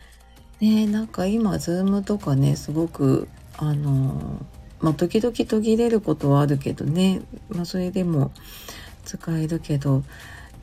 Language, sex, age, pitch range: Japanese, female, 40-59, 140-195 Hz